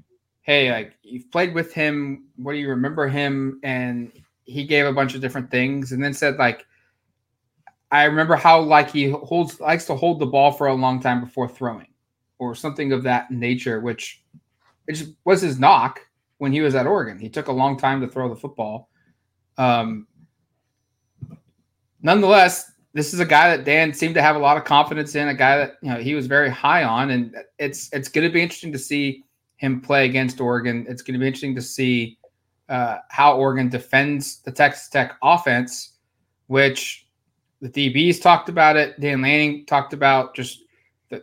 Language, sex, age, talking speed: English, male, 20-39, 190 wpm